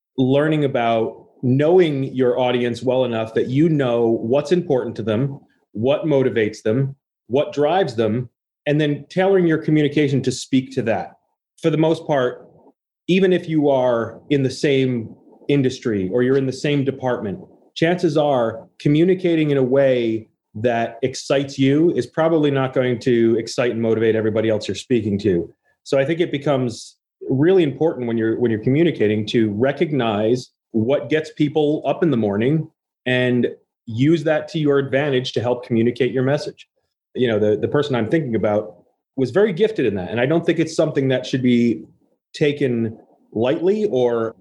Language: English